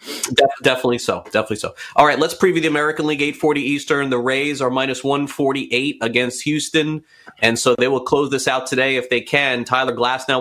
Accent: American